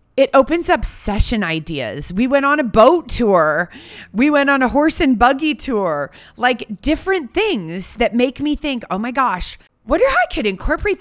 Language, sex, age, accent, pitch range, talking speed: English, female, 30-49, American, 195-290 Hz, 185 wpm